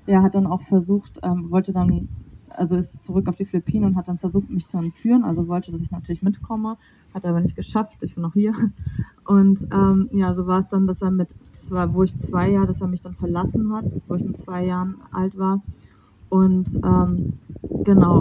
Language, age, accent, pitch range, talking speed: German, 20-39, German, 175-195 Hz, 220 wpm